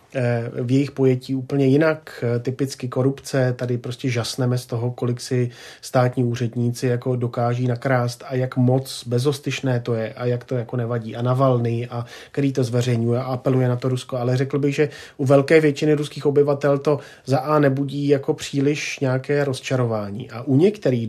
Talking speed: 175 wpm